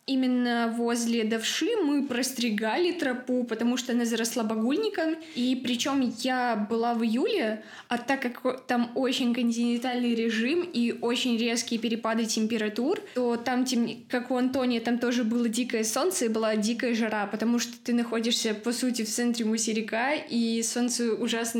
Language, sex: Russian, female